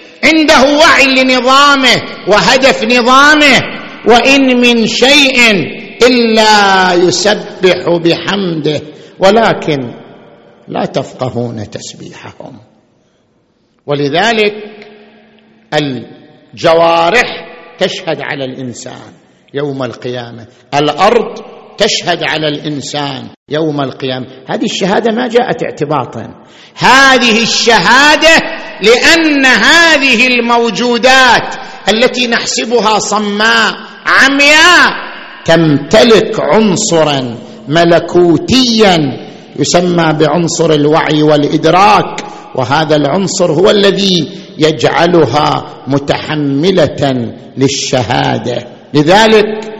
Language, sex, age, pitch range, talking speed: Arabic, male, 50-69, 155-230 Hz, 70 wpm